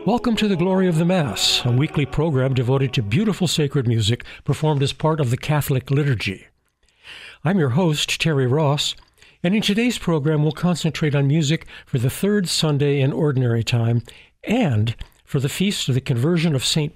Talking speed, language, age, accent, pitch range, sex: 180 wpm, English, 60-79, American, 120-160 Hz, male